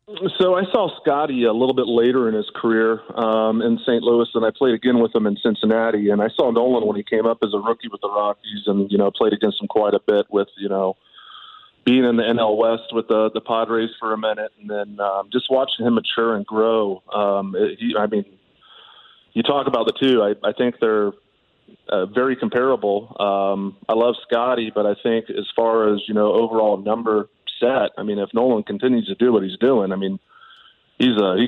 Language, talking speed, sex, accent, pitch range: English, 220 wpm, male, American, 105-120 Hz